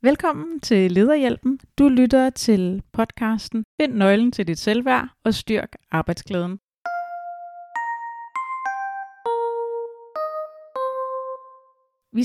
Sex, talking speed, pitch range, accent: female, 80 wpm, 185-255 Hz, native